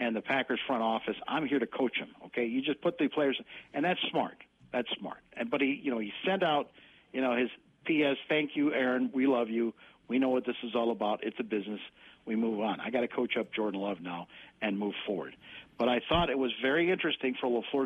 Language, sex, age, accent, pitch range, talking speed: English, male, 50-69, American, 120-150 Hz, 240 wpm